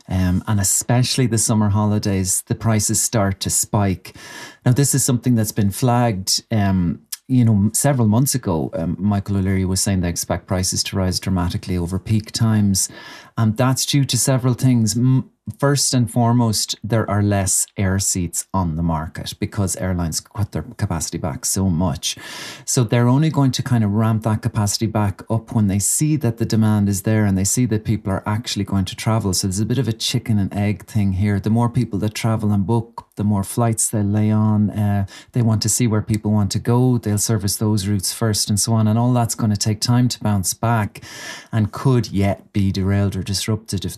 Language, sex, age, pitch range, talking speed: English, male, 30-49, 100-120 Hz, 210 wpm